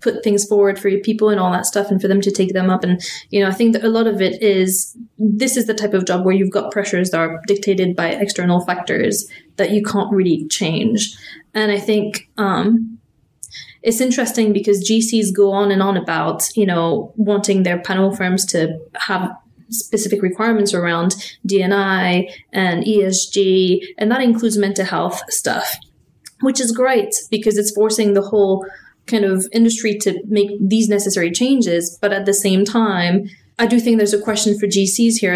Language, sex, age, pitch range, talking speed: English, female, 20-39, 185-215 Hz, 190 wpm